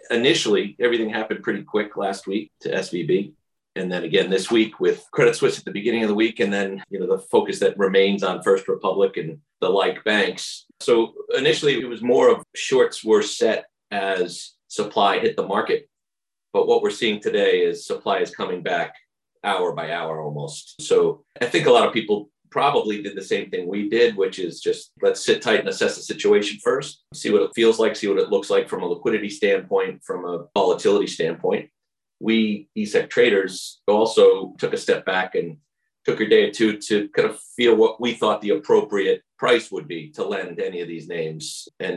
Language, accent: English, American